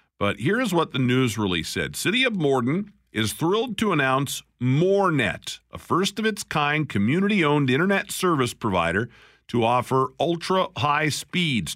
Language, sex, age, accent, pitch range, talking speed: English, male, 50-69, American, 115-170 Hz, 130 wpm